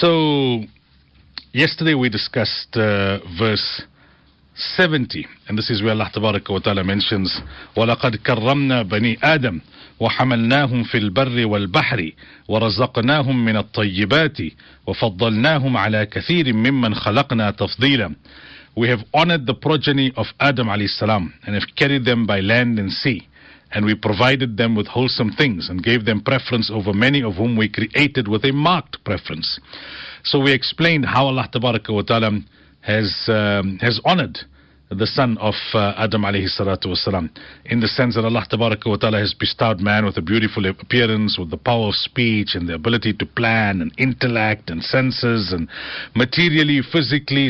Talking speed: 150 wpm